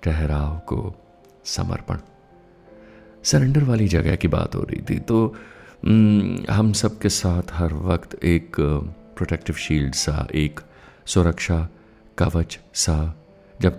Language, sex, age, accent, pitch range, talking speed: Hindi, male, 50-69, native, 80-105 Hz, 120 wpm